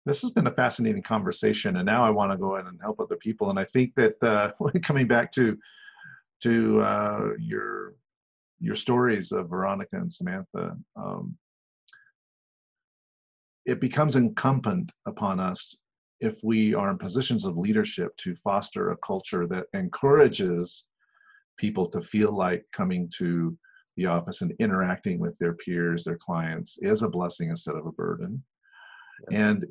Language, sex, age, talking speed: English, male, 50-69, 150 wpm